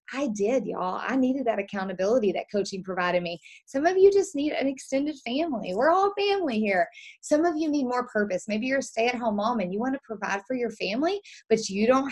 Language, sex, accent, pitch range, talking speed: English, female, American, 200-270 Hz, 225 wpm